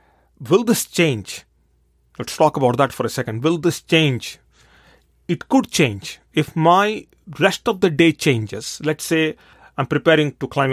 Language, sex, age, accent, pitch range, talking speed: English, male, 40-59, Indian, 130-155 Hz, 160 wpm